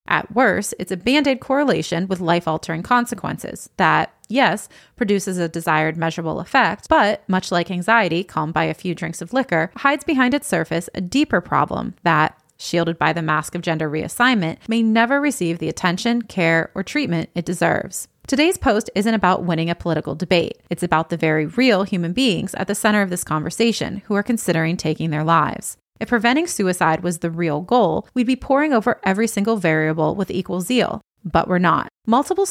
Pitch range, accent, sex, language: 170-230 Hz, American, female, English